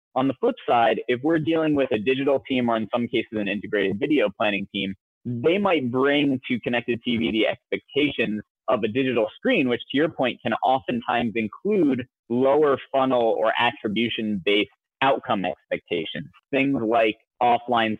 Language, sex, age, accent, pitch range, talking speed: English, male, 30-49, American, 110-145 Hz, 160 wpm